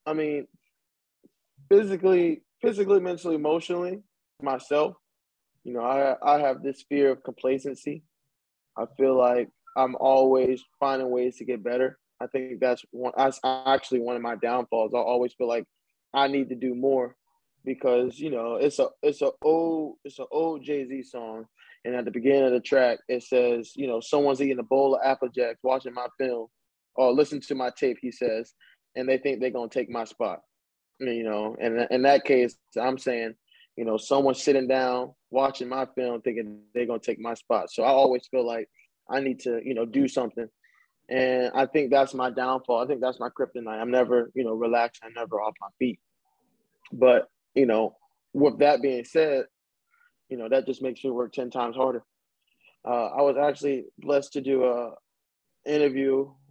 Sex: male